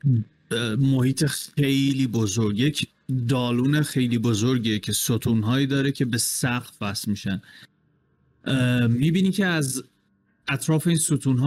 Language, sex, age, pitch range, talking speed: Persian, male, 30-49, 115-145 Hz, 110 wpm